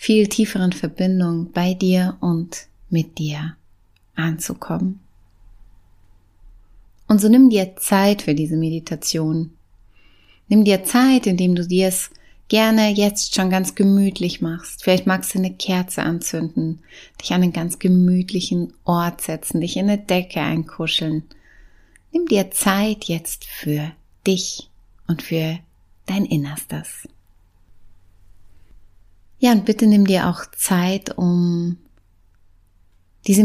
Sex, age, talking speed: female, 30-49, 120 wpm